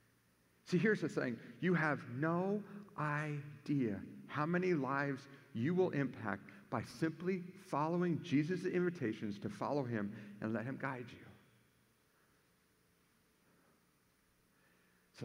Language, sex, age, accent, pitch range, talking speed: English, male, 50-69, American, 150-210 Hz, 110 wpm